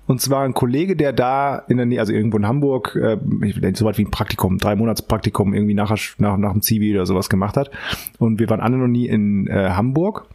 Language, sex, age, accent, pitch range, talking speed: German, male, 30-49, German, 115-160 Hz, 240 wpm